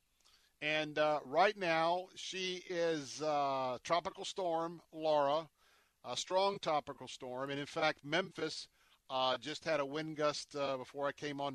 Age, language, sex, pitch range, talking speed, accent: 50-69, English, male, 130-165 Hz, 150 wpm, American